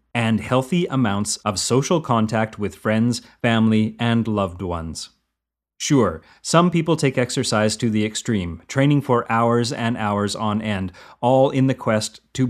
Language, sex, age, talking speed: English, male, 30-49, 155 wpm